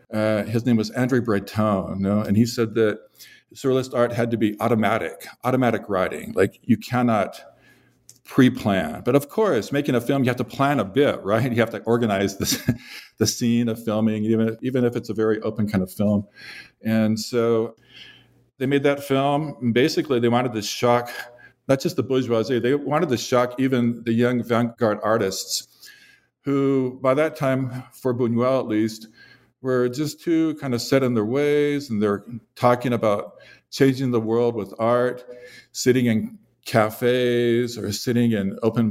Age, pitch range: 50-69, 110-125 Hz